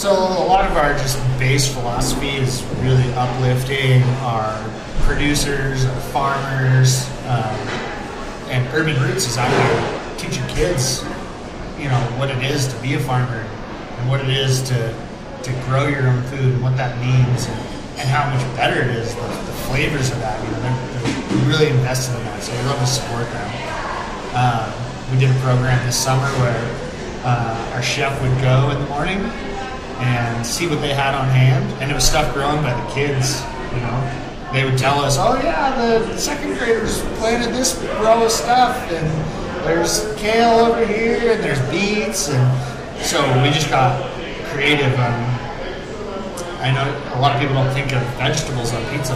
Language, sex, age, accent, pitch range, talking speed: English, male, 30-49, American, 125-145 Hz, 180 wpm